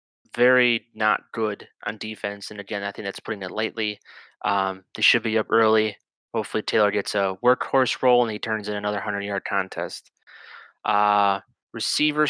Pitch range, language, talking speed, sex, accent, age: 105-120 Hz, English, 165 wpm, male, American, 20-39